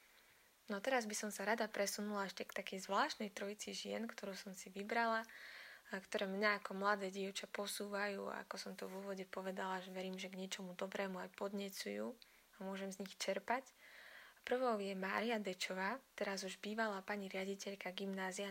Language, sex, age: Slovak, female, 20-39